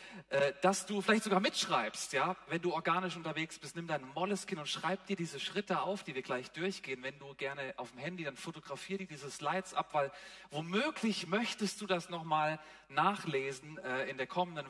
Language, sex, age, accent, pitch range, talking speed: German, male, 40-59, German, 160-195 Hz, 190 wpm